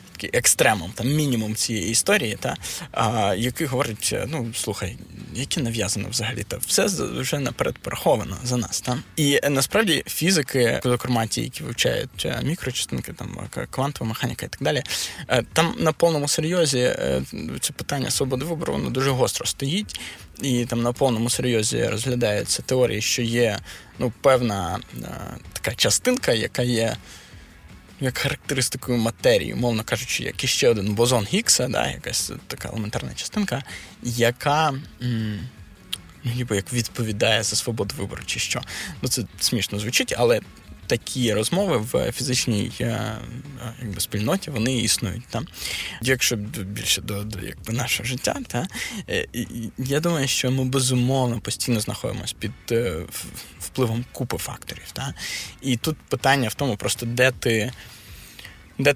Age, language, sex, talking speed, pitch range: 20-39, Russian, male, 130 wpm, 105-130 Hz